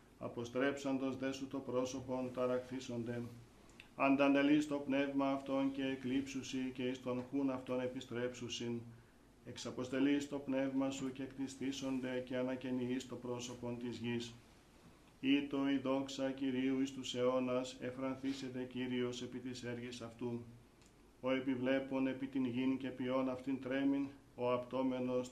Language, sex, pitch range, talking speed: Greek, male, 125-135 Hz, 130 wpm